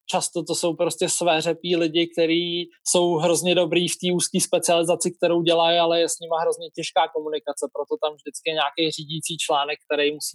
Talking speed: 190 wpm